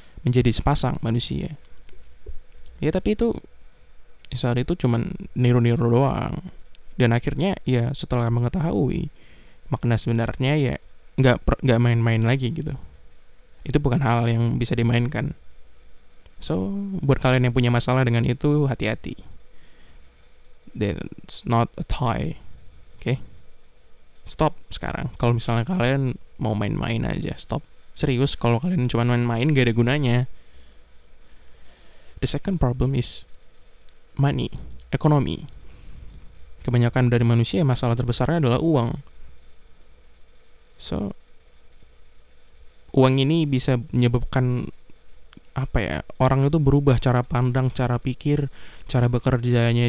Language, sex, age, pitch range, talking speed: Indonesian, male, 10-29, 90-130 Hz, 110 wpm